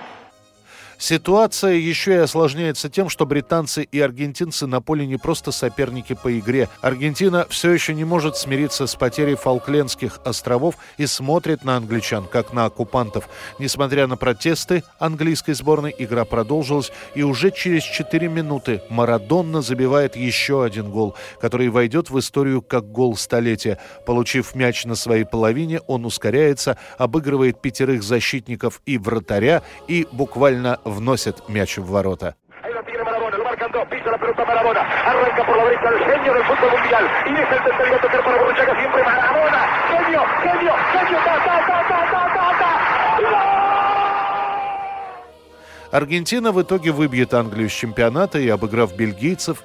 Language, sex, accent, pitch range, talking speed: Russian, male, native, 120-165 Hz, 105 wpm